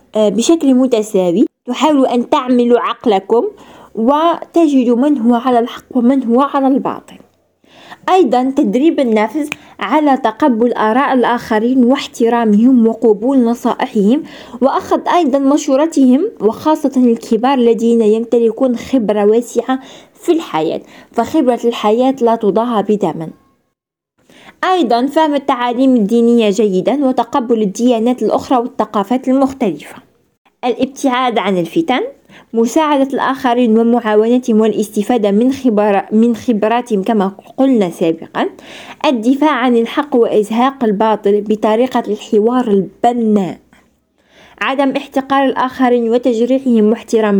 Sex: female